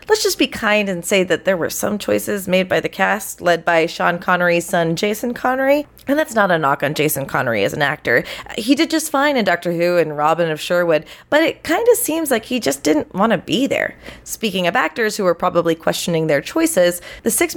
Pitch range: 175-270 Hz